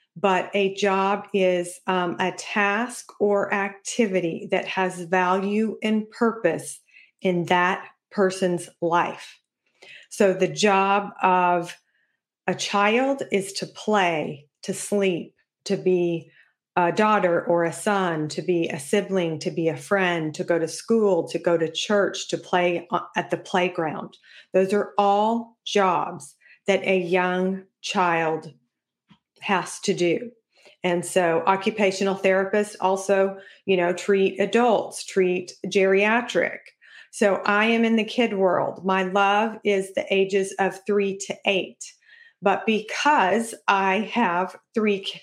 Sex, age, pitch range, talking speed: female, 40-59, 180-210 Hz, 135 wpm